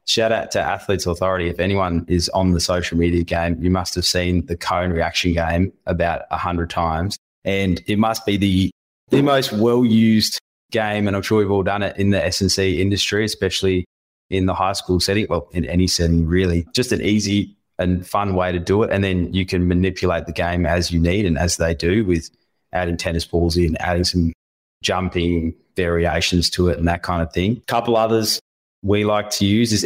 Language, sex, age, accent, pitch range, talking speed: English, male, 20-39, Australian, 85-100 Hz, 205 wpm